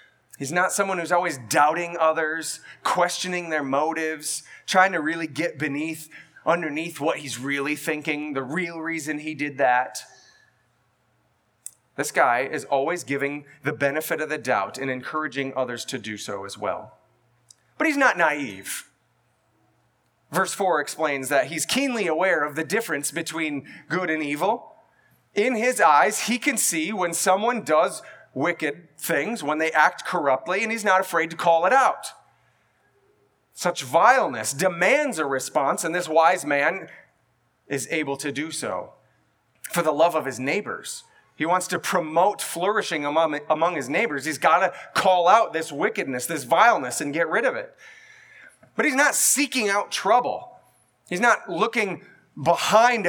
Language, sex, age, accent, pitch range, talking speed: English, male, 30-49, American, 145-185 Hz, 155 wpm